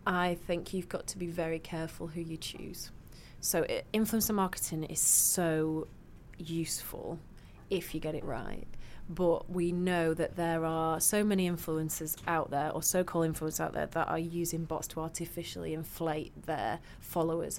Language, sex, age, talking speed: English, female, 30-49, 160 wpm